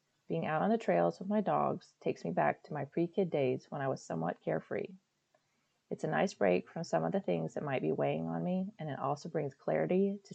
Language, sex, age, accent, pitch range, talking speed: English, female, 30-49, American, 155-190 Hz, 240 wpm